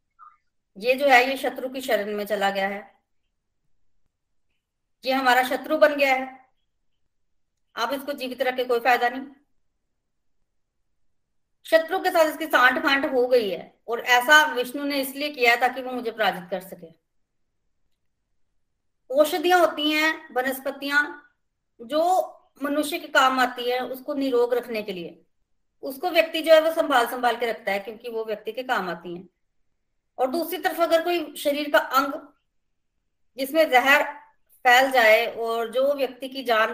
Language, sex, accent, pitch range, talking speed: Hindi, female, native, 210-280 Hz, 155 wpm